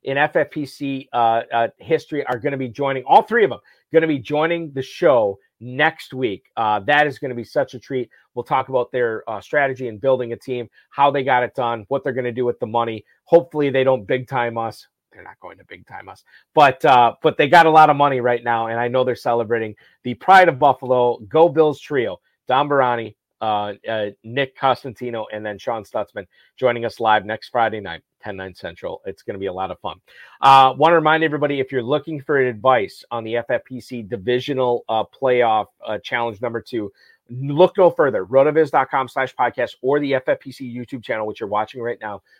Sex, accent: male, American